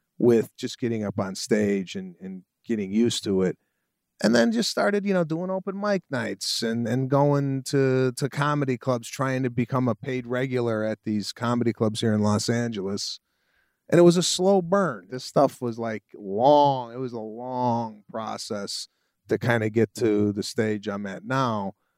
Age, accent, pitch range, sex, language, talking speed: 30-49, American, 110-130 Hz, male, English, 190 wpm